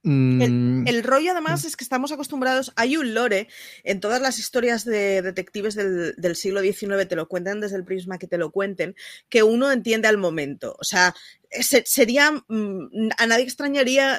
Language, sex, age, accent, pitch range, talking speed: Spanish, female, 30-49, Spanish, 195-255 Hz, 180 wpm